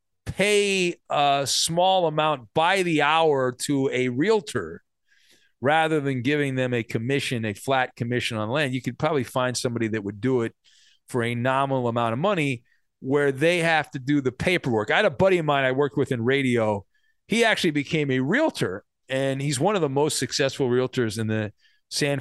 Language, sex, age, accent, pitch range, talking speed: English, male, 40-59, American, 125-165 Hz, 190 wpm